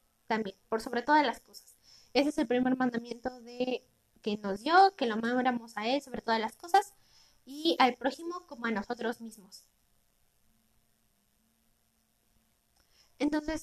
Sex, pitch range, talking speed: female, 225-290 Hz, 140 wpm